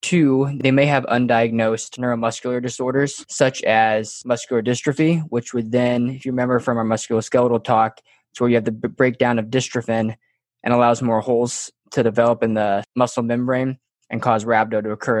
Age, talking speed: 20-39, 175 wpm